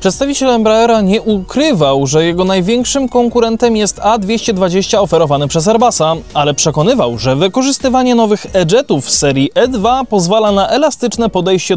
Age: 20-39